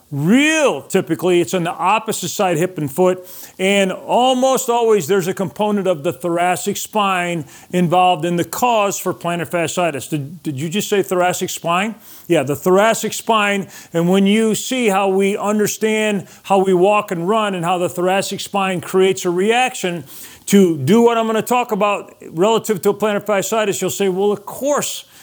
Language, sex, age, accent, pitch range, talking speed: English, male, 40-59, American, 175-215 Hz, 180 wpm